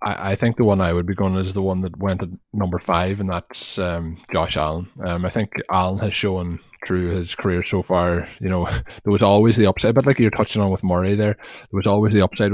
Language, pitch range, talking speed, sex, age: English, 90-100 Hz, 255 wpm, male, 20-39